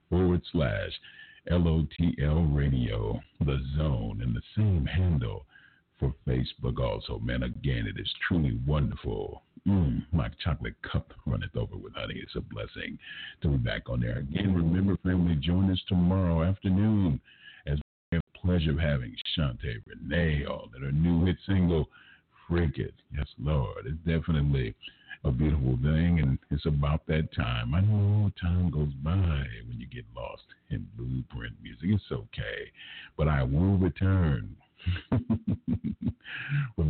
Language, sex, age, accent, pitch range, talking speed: English, male, 50-69, American, 70-90 Hz, 145 wpm